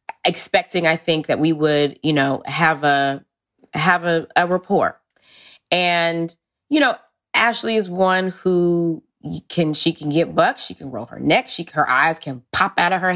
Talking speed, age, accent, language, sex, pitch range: 180 wpm, 20-39, American, English, female, 165-235 Hz